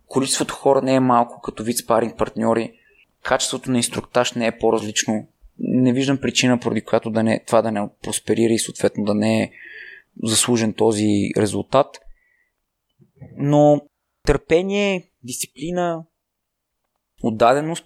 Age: 20-39